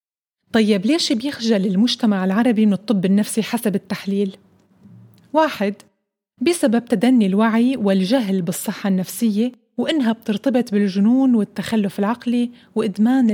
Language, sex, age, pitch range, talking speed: Arabic, female, 30-49, 200-250 Hz, 105 wpm